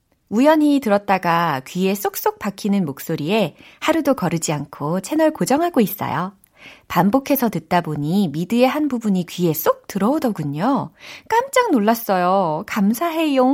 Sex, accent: female, native